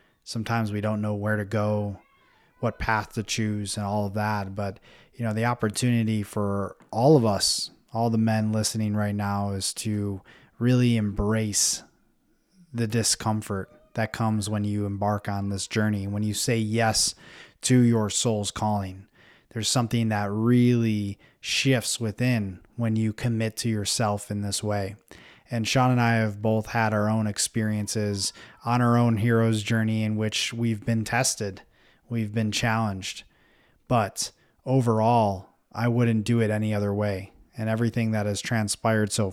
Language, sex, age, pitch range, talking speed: English, male, 20-39, 105-115 Hz, 160 wpm